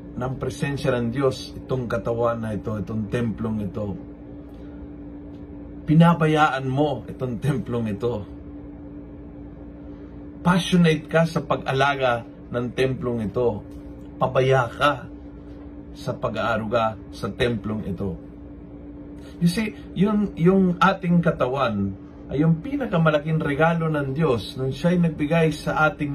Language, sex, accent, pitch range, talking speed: Filipino, male, native, 115-160 Hz, 110 wpm